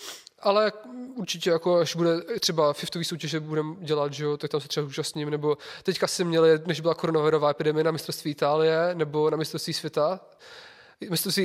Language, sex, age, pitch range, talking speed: Czech, male, 20-39, 155-175 Hz, 175 wpm